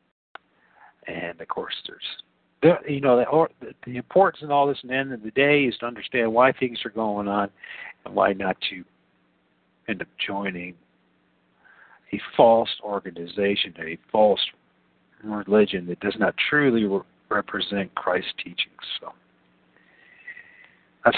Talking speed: 140 wpm